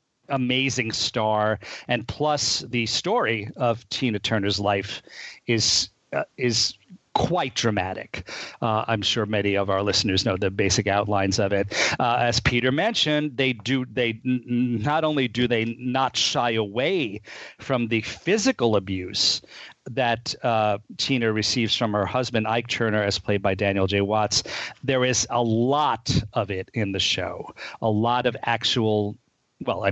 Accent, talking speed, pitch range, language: American, 150 wpm, 105-125 Hz, English